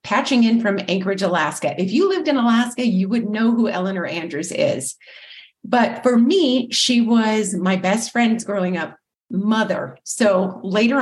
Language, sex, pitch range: English, female, 190-240 Hz